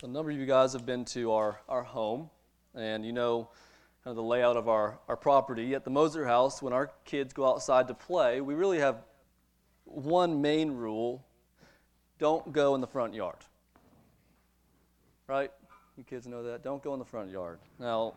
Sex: male